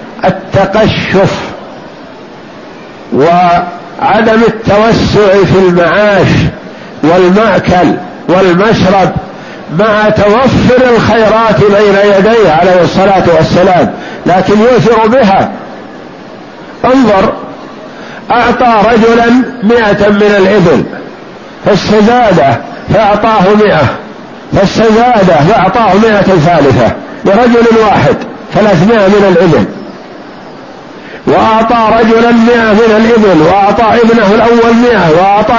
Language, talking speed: Arabic, 80 wpm